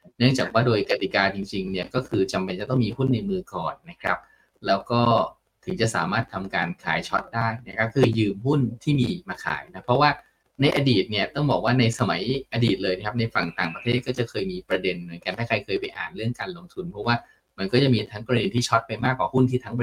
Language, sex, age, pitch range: Thai, male, 20-39, 105-135 Hz